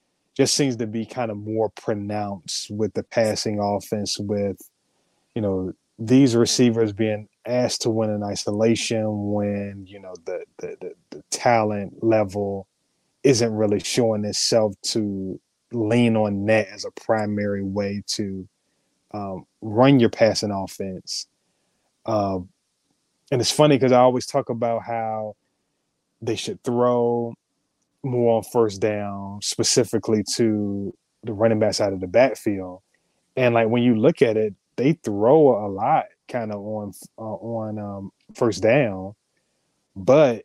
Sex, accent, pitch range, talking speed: male, American, 100-115 Hz, 140 wpm